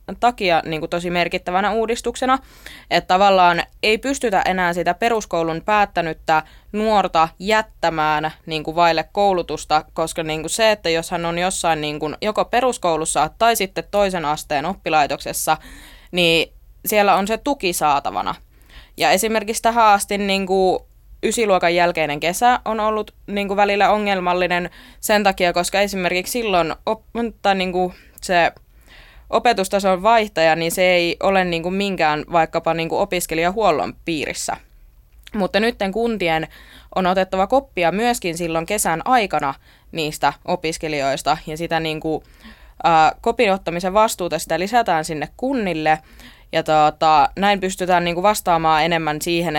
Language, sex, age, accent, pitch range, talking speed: Finnish, female, 20-39, native, 160-205 Hz, 130 wpm